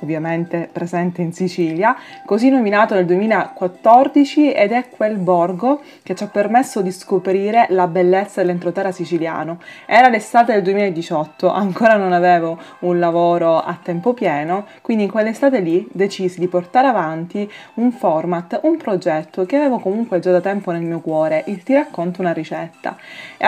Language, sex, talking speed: Italian, female, 155 wpm